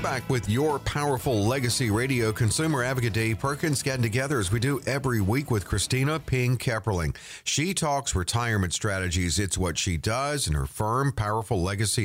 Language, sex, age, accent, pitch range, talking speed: English, male, 50-69, American, 95-135 Hz, 170 wpm